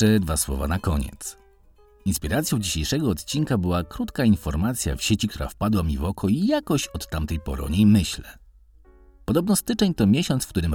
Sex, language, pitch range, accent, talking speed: male, Polish, 75-115 Hz, native, 175 wpm